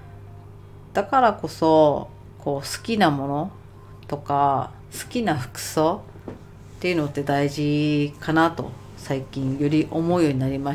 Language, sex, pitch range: Japanese, female, 105-160 Hz